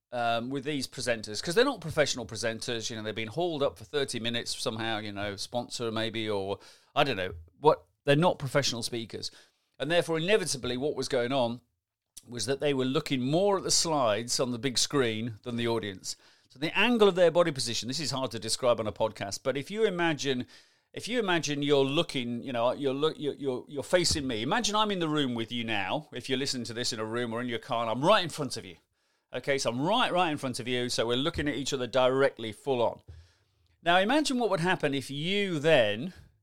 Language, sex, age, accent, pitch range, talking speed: English, male, 40-59, British, 115-155 Hz, 230 wpm